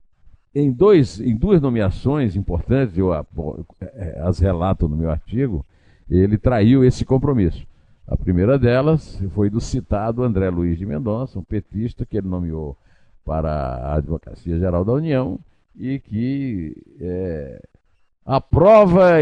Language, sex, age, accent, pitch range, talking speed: Portuguese, male, 60-79, Brazilian, 90-130 Hz, 130 wpm